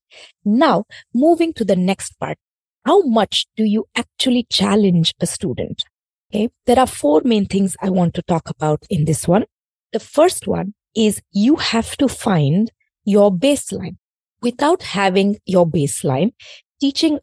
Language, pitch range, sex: English, 170-230 Hz, female